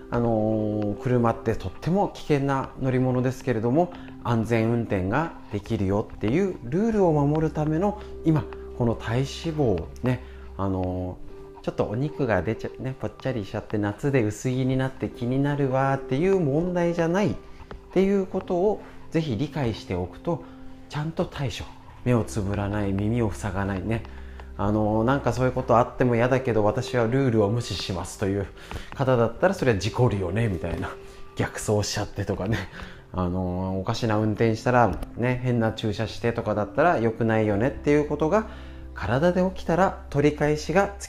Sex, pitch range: male, 100-155 Hz